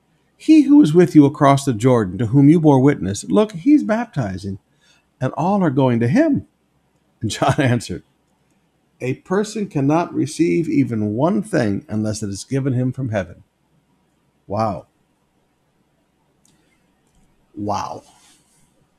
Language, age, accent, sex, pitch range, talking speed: English, 60-79, American, male, 125-190 Hz, 130 wpm